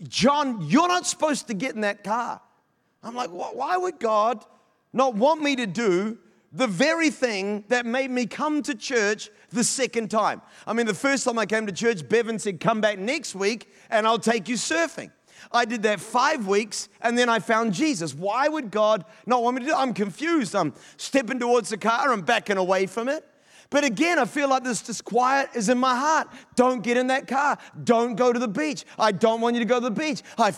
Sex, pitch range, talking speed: male, 215-270 Hz, 220 wpm